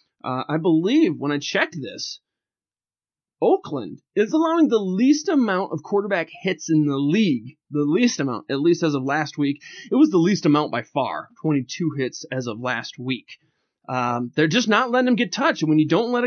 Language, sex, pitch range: English, male, 145-245 Hz